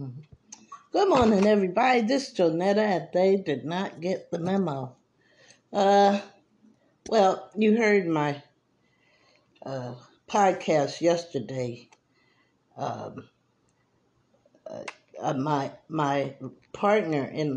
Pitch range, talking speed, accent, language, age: 150-205 Hz, 90 wpm, American, English, 50-69